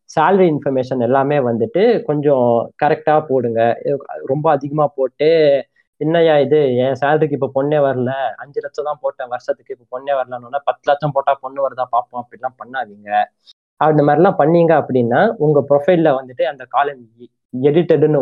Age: 20-39